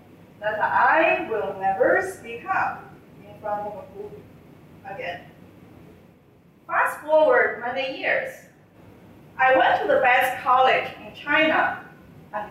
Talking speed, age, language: 110 wpm, 30-49, English